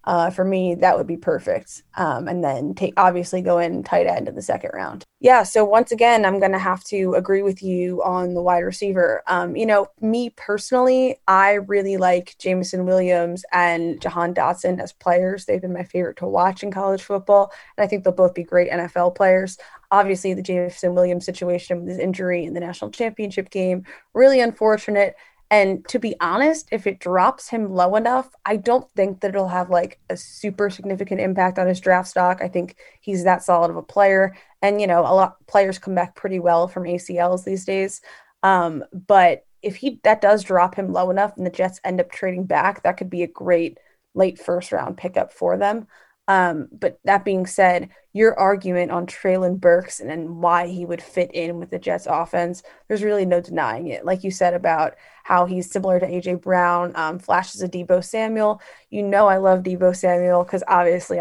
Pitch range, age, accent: 180-200 Hz, 20-39, American